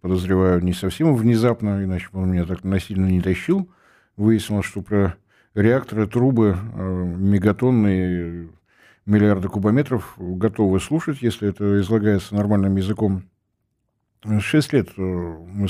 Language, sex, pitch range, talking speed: Russian, male, 95-115 Hz, 115 wpm